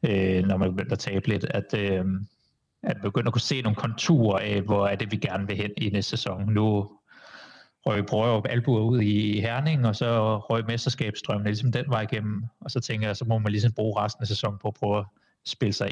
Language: Danish